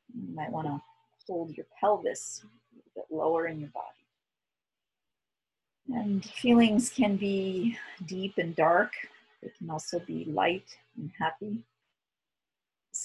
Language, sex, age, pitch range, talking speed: English, female, 40-59, 160-200 Hz, 125 wpm